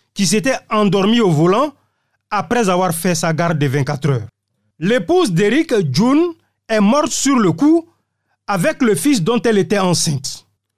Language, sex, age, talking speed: French, male, 40-59, 155 wpm